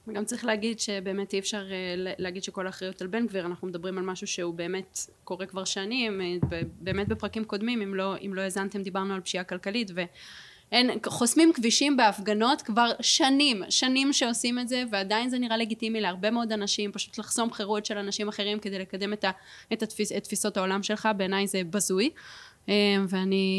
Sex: female